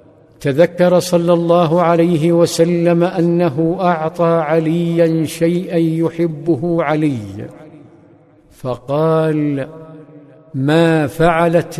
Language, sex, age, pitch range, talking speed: Arabic, male, 50-69, 155-170 Hz, 70 wpm